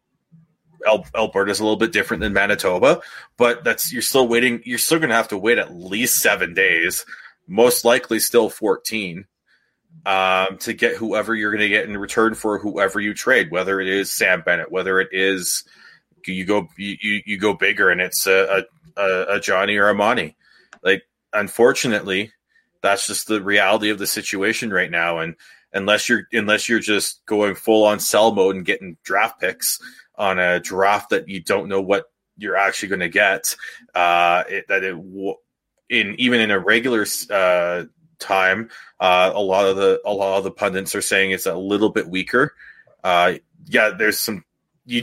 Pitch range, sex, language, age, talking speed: 95-115 Hz, male, English, 20-39, 185 wpm